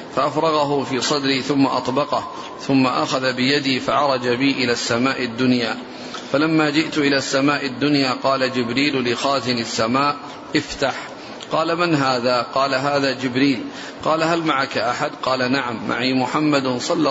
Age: 40-59